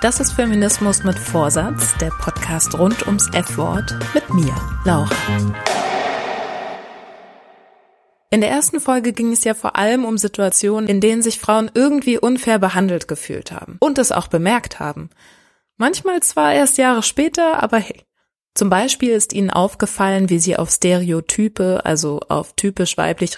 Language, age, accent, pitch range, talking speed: German, 20-39, German, 175-235 Hz, 150 wpm